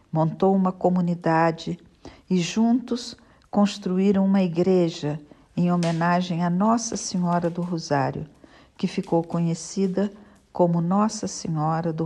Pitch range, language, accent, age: 145-180 Hz, Portuguese, Brazilian, 60-79